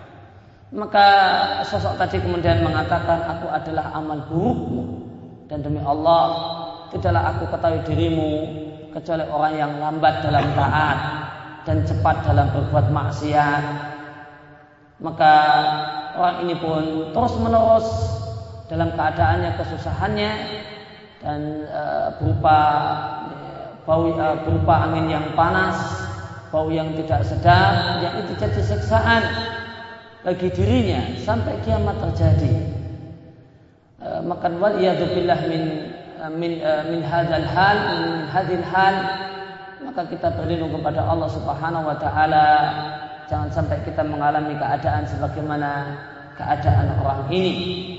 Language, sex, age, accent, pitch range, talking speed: Indonesian, male, 30-49, native, 140-165 Hz, 110 wpm